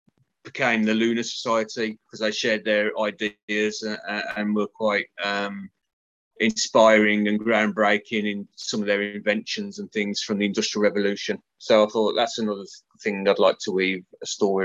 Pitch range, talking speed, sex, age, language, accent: 105-120 Hz, 165 wpm, male, 30-49, English, British